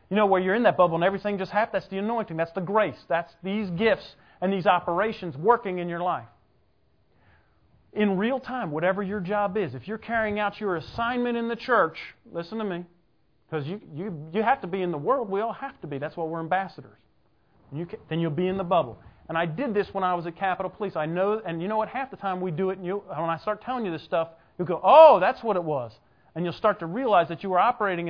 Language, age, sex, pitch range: English, 40-59, male, 170-225 Hz